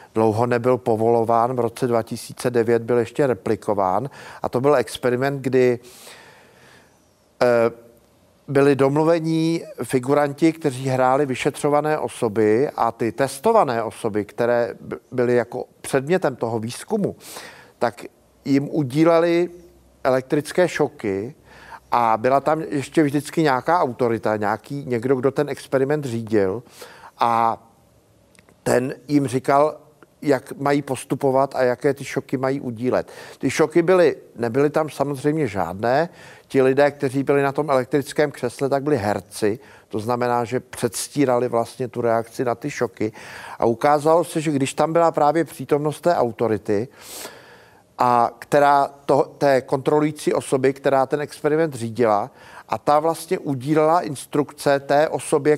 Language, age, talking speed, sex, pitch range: Czech, 50-69, 125 wpm, male, 120-150 Hz